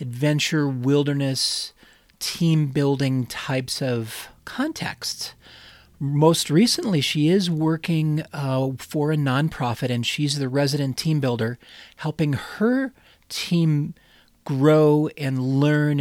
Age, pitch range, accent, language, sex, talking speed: 40-59, 125-150 Hz, American, English, male, 100 wpm